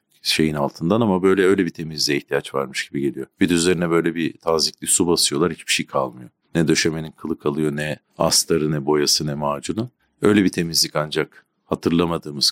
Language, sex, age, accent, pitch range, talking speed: Turkish, male, 50-69, native, 80-90 Hz, 175 wpm